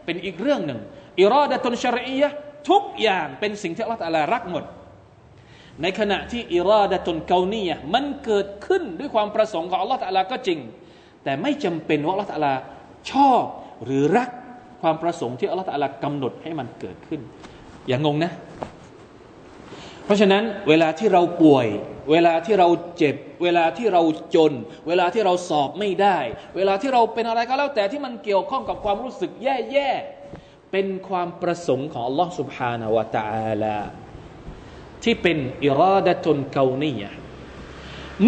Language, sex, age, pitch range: Thai, male, 20-39, 160-245 Hz